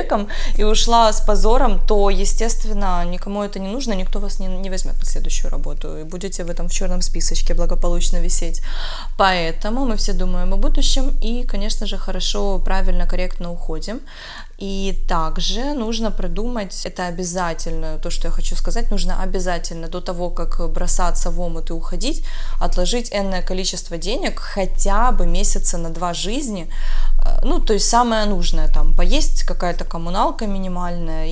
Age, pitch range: 20-39, 175-210 Hz